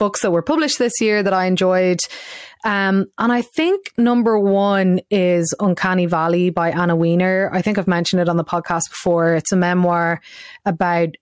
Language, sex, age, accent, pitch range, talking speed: English, female, 20-39, Irish, 165-195 Hz, 180 wpm